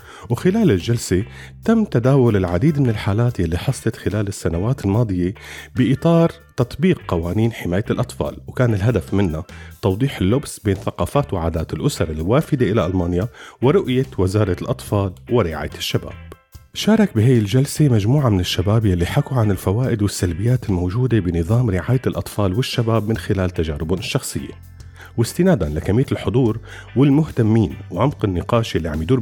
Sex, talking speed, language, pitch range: male, 130 wpm, Arabic, 90-125 Hz